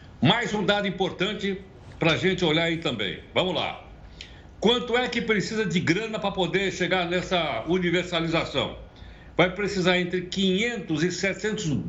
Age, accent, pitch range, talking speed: 60-79, Brazilian, 155-195 Hz, 145 wpm